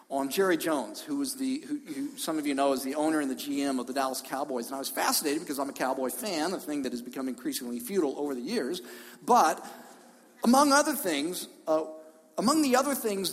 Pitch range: 175-275 Hz